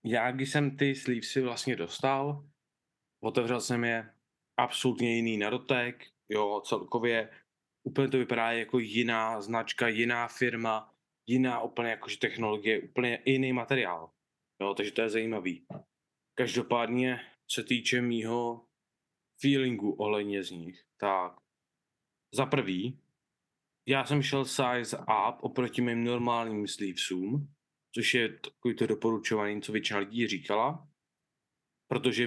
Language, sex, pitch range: Czech, male, 110-125 Hz